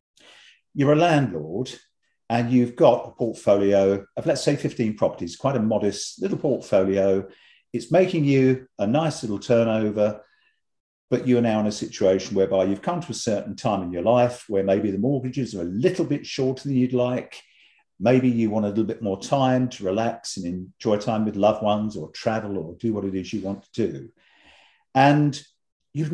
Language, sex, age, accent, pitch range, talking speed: English, male, 50-69, British, 100-135 Hz, 190 wpm